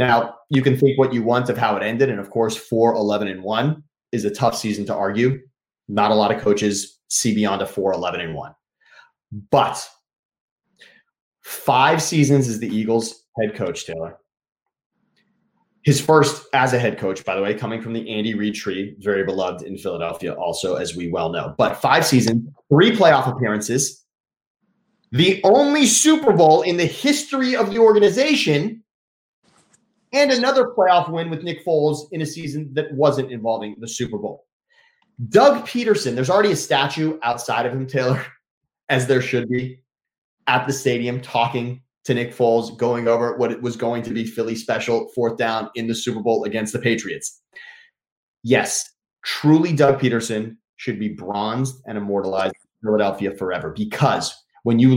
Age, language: 30-49, English